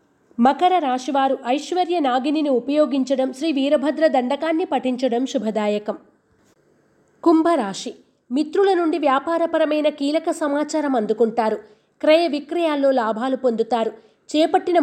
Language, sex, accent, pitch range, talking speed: Telugu, female, native, 245-315 Hz, 90 wpm